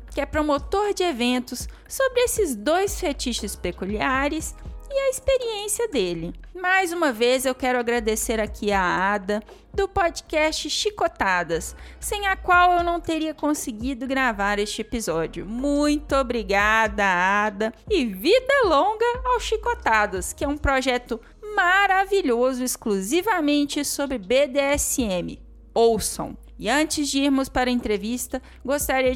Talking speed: 125 wpm